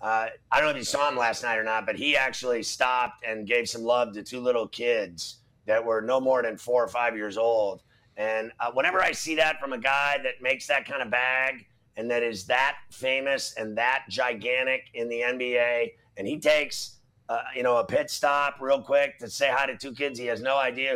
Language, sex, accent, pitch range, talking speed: English, male, American, 120-150 Hz, 230 wpm